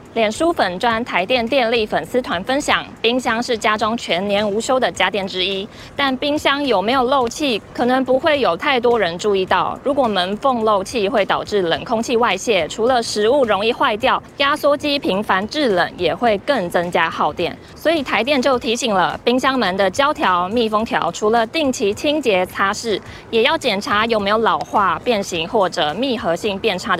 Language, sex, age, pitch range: Chinese, female, 20-39, 195-265 Hz